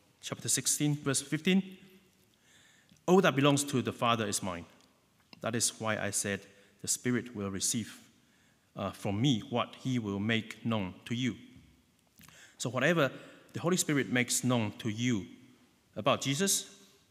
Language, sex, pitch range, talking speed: English, male, 100-125 Hz, 145 wpm